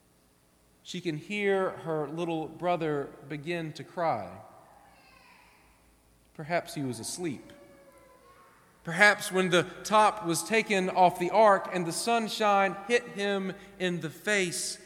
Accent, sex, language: American, male, English